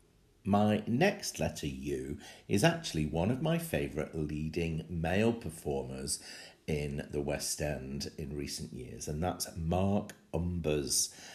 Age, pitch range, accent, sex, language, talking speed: 50-69, 75-90 Hz, British, male, English, 125 wpm